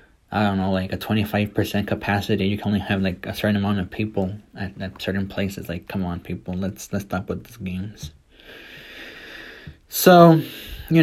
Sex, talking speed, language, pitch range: male, 180 wpm, English, 105-125 Hz